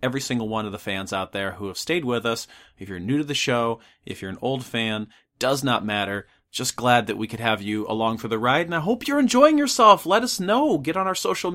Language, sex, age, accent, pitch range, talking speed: English, male, 40-59, American, 115-145 Hz, 265 wpm